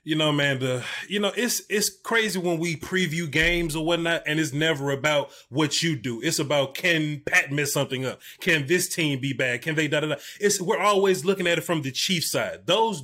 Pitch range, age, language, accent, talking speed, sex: 155-215 Hz, 30-49, English, American, 225 wpm, male